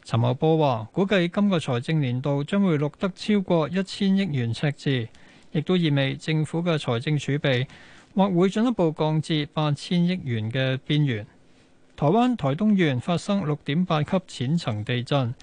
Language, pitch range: Chinese, 130-175 Hz